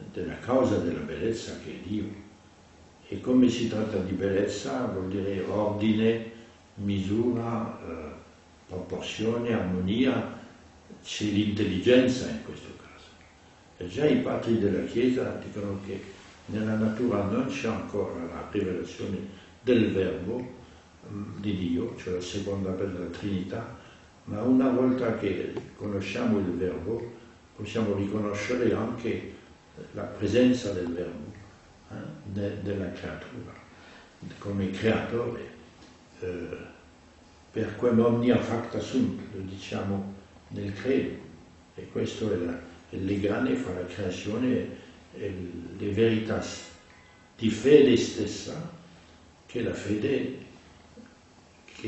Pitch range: 90-115 Hz